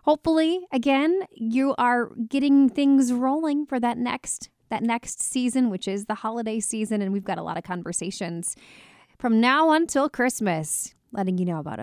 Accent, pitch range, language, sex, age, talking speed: American, 185-255 Hz, English, female, 30-49, 165 wpm